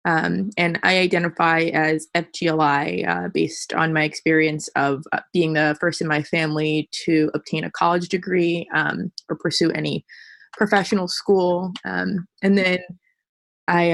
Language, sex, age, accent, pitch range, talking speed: English, female, 20-39, American, 160-195 Hz, 140 wpm